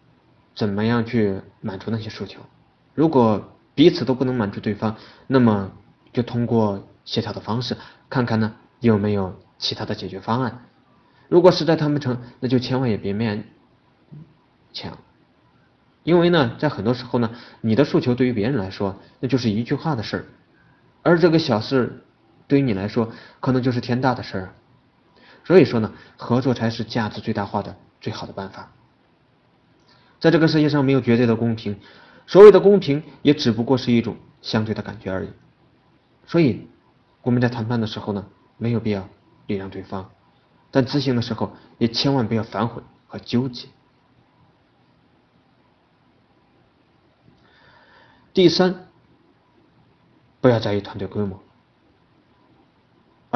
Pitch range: 105-130 Hz